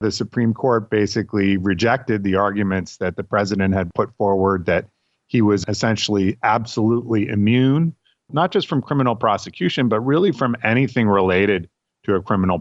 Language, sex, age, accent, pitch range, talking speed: English, male, 40-59, American, 95-115 Hz, 150 wpm